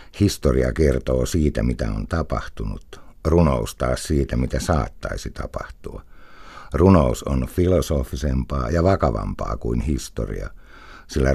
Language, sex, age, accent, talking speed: Finnish, male, 60-79, native, 105 wpm